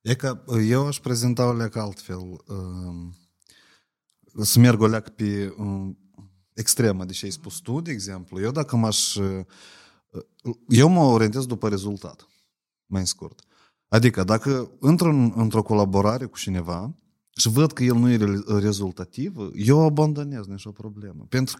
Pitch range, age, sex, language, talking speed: 105-145 Hz, 30-49, male, Romanian, 130 wpm